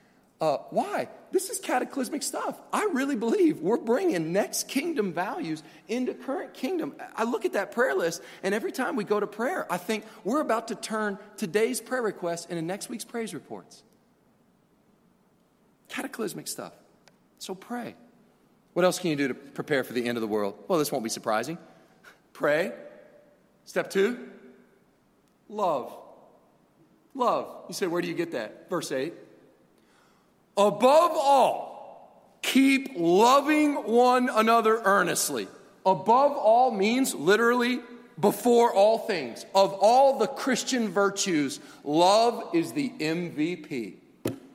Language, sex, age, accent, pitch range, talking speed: English, male, 40-59, American, 190-255 Hz, 140 wpm